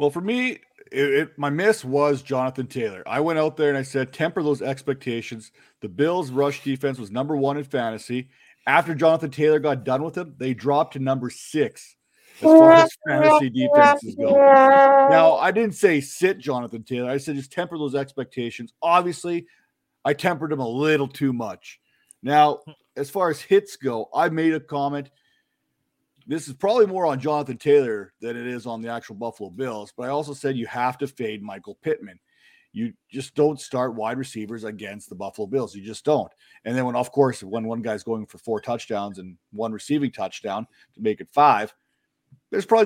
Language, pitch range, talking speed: English, 125-175 Hz, 195 wpm